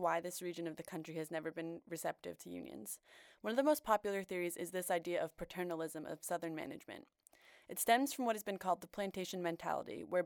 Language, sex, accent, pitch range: English, female, American, 170-200 Hz